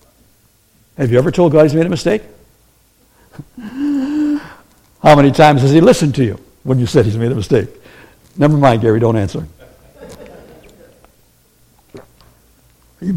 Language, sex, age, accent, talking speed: English, male, 60-79, American, 135 wpm